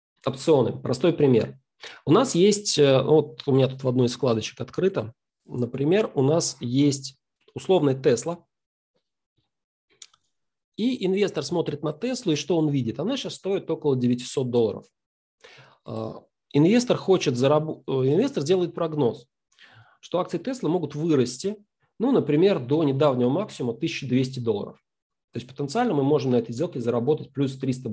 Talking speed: 135 wpm